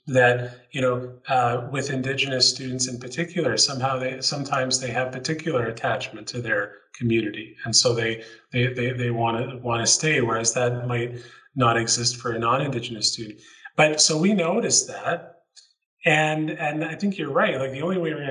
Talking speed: 175 wpm